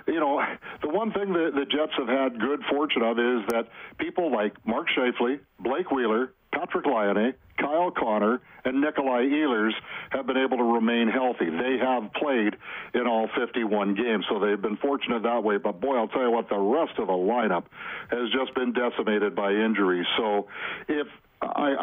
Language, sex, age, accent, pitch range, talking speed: English, male, 60-79, American, 110-145 Hz, 185 wpm